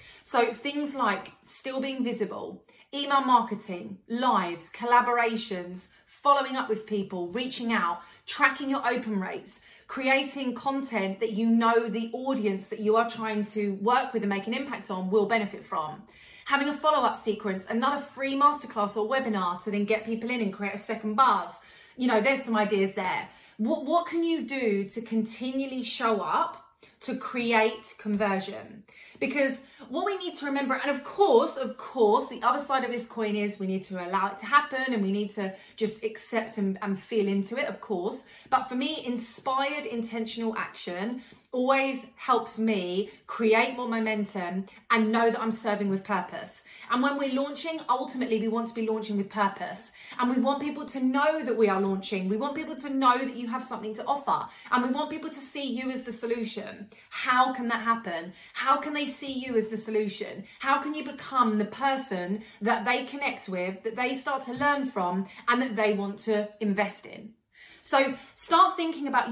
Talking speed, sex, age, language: 190 wpm, female, 30-49, English